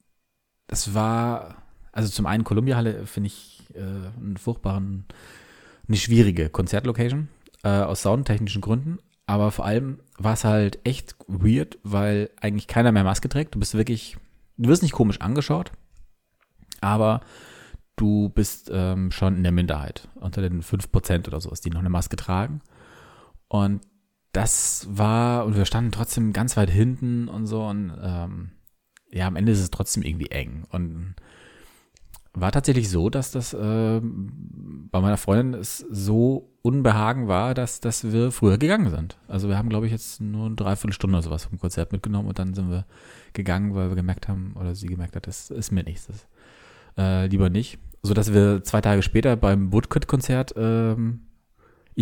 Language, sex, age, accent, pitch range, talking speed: German, male, 30-49, German, 95-115 Hz, 165 wpm